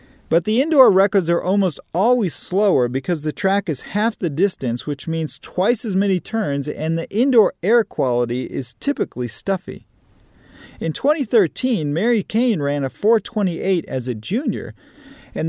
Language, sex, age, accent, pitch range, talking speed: English, male, 40-59, American, 145-210 Hz, 155 wpm